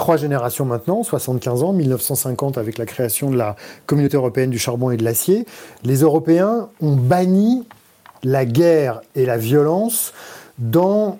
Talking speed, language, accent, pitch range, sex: 150 wpm, French, French, 125-175 Hz, male